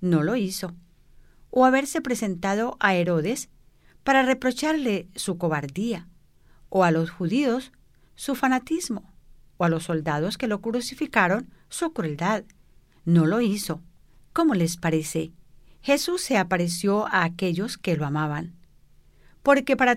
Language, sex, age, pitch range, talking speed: English, female, 50-69, 170-255 Hz, 130 wpm